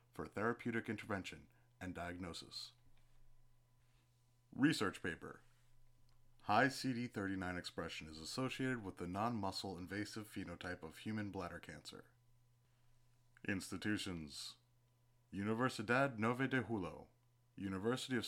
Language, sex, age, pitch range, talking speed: English, male, 30-49, 100-125 Hz, 90 wpm